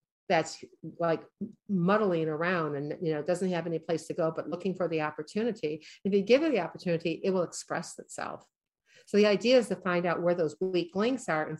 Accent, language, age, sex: American, English, 50-69, female